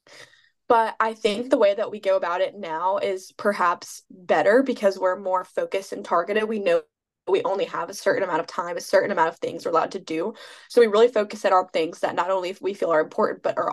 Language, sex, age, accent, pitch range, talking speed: English, female, 10-29, American, 190-245 Hz, 235 wpm